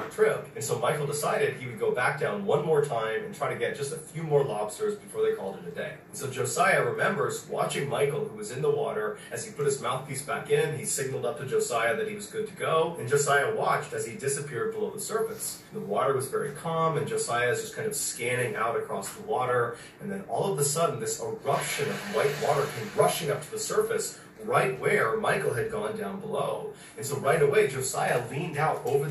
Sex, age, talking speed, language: male, 30-49, 235 wpm, English